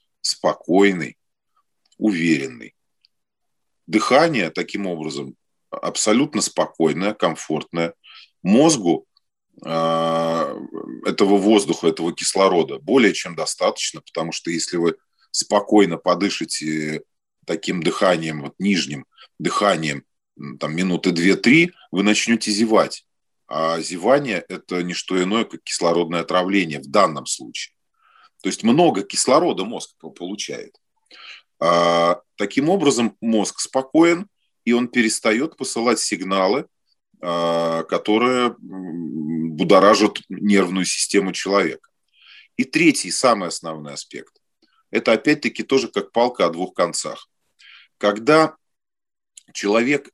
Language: Russian